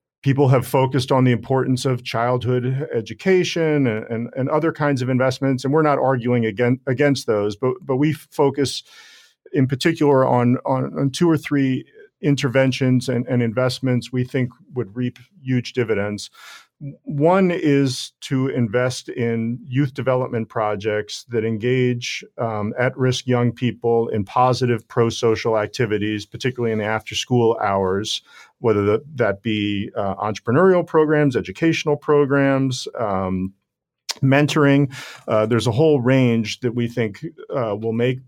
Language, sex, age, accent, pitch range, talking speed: English, male, 40-59, American, 115-135 Hz, 140 wpm